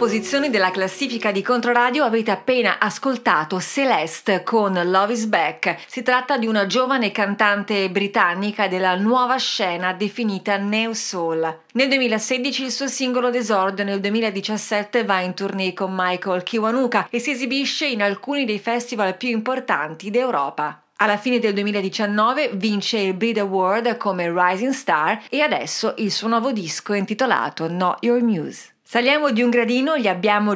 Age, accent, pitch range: 30-49, native, 195-245 Hz